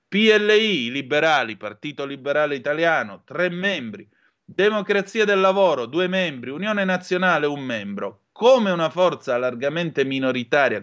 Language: Italian